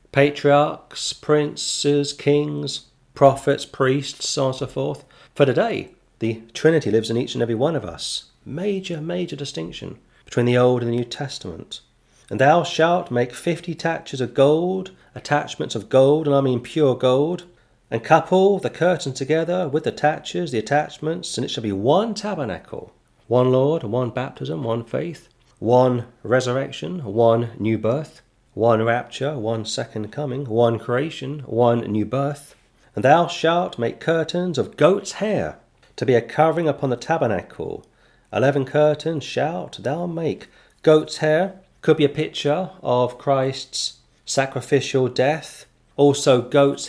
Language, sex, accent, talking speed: English, male, British, 150 wpm